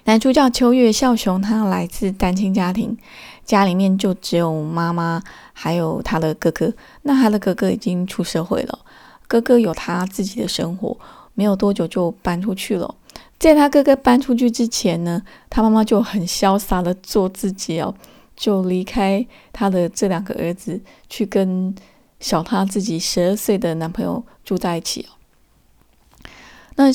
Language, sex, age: Chinese, female, 20-39